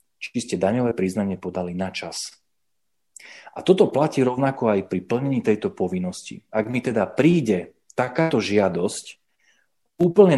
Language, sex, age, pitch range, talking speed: Slovak, male, 40-59, 95-135 Hz, 125 wpm